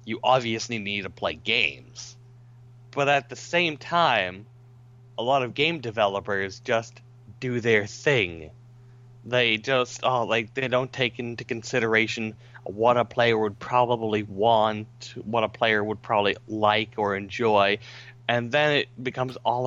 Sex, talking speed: male, 145 wpm